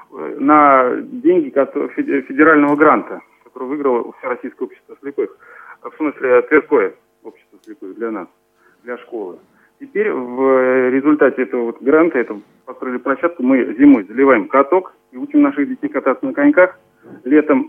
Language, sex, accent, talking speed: Russian, male, native, 125 wpm